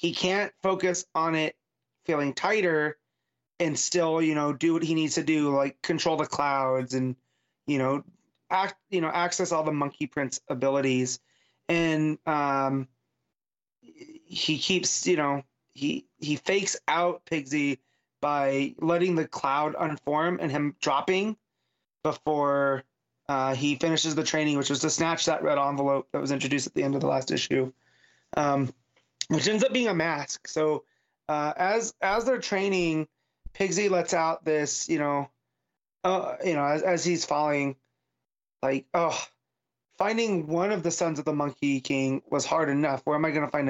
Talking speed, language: 165 wpm, English